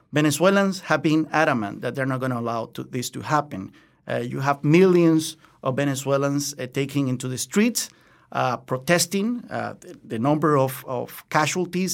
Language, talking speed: English, 170 wpm